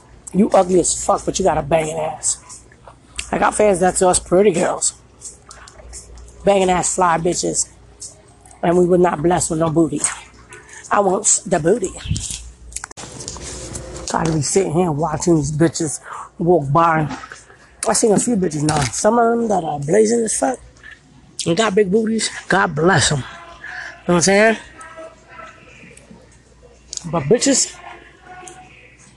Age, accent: 20-39, American